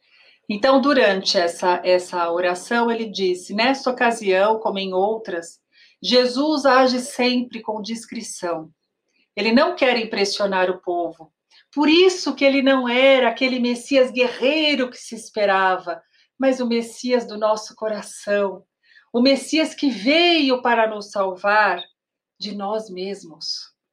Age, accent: 50-69, Brazilian